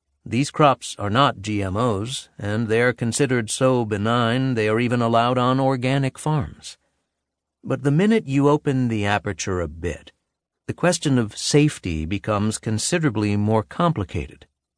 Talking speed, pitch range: 140 wpm, 100-140 Hz